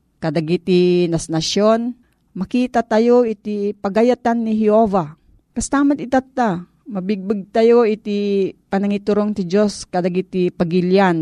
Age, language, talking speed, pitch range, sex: 40-59, Filipino, 110 wpm, 170-215 Hz, female